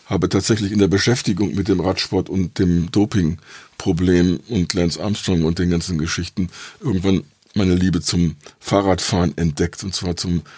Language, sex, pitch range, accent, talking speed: German, male, 85-100 Hz, German, 155 wpm